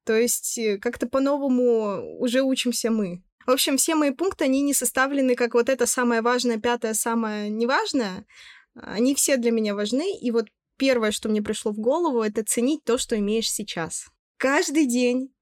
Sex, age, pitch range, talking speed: female, 20-39, 210-255 Hz, 170 wpm